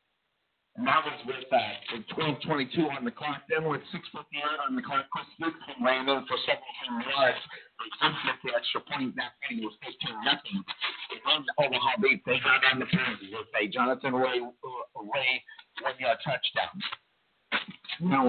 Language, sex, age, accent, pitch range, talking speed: English, male, 50-69, American, 130-170 Hz, 155 wpm